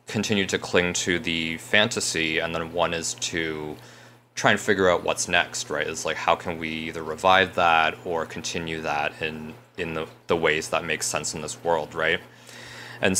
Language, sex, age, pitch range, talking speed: English, male, 20-39, 80-105 Hz, 190 wpm